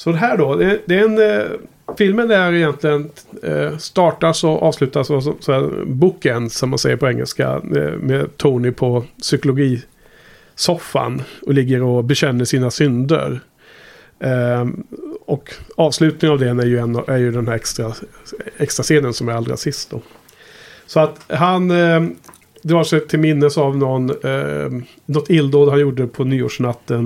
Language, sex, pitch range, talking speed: Swedish, male, 130-165 Hz, 155 wpm